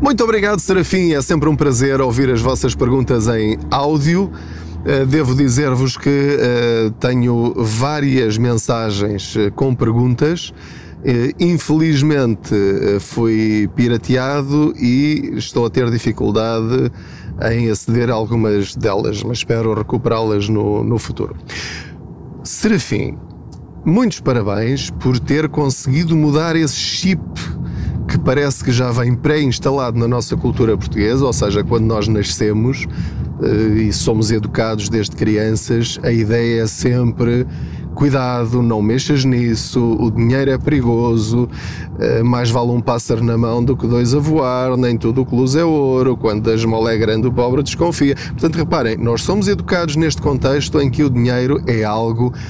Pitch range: 110-140 Hz